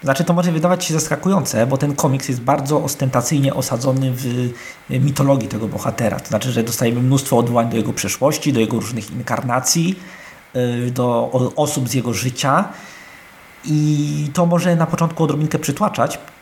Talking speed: 155 wpm